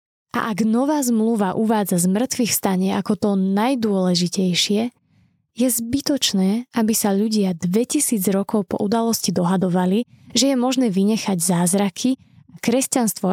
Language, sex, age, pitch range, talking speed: Slovak, female, 20-39, 190-230 Hz, 125 wpm